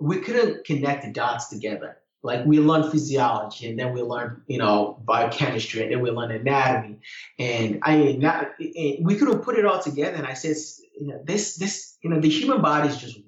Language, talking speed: English, 205 wpm